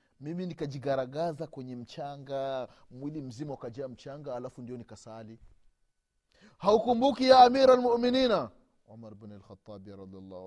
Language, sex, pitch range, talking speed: Swahili, male, 105-140 Hz, 110 wpm